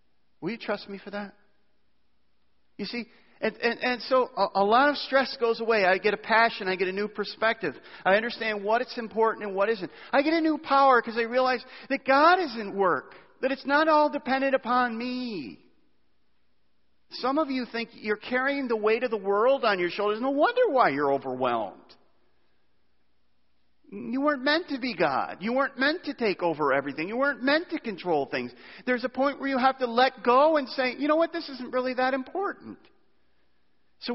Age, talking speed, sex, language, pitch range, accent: 40-59, 200 wpm, male, English, 200-260 Hz, American